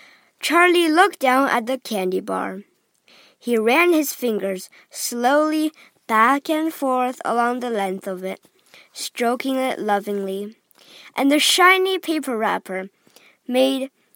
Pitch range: 210-325 Hz